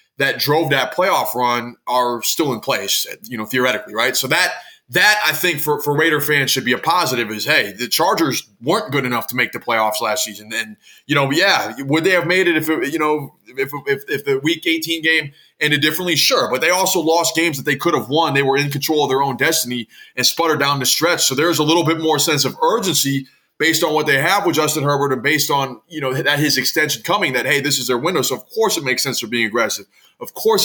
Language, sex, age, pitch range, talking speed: English, male, 20-39, 135-160 Hz, 255 wpm